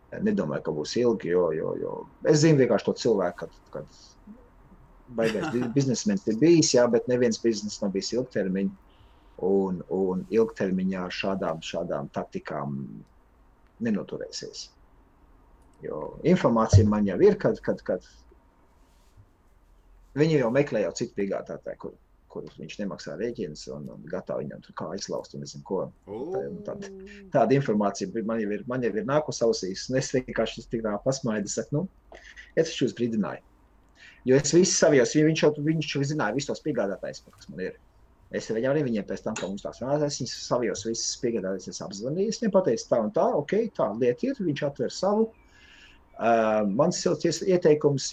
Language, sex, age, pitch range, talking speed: English, male, 30-49, 105-160 Hz, 140 wpm